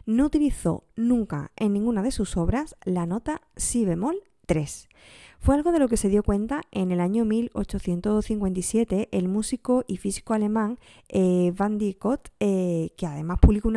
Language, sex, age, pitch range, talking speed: Spanish, female, 20-39, 175-230 Hz, 165 wpm